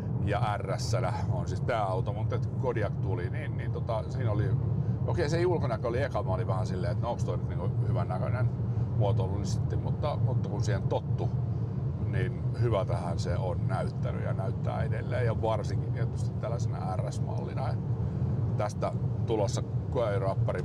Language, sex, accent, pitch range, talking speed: Finnish, male, native, 115-125 Hz, 160 wpm